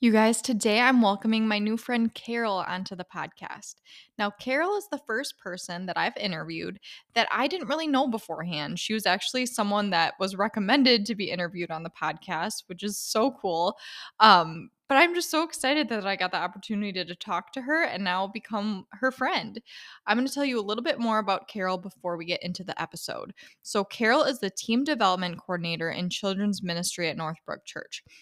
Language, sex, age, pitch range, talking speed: English, female, 10-29, 185-245 Hz, 200 wpm